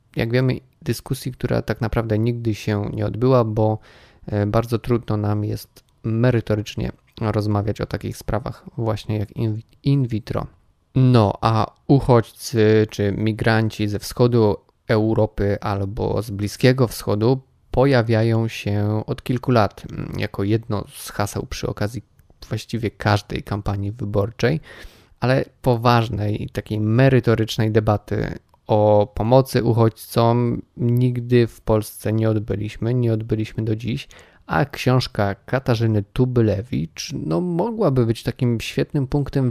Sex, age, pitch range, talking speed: male, 20-39, 105-125 Hz, 120 wpm